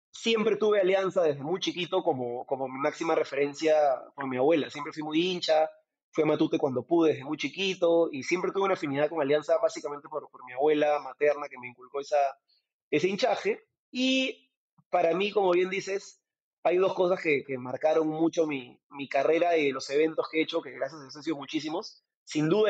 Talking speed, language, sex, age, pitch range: 200 wpm, Spanish, male, 30-49, 145-190 Hz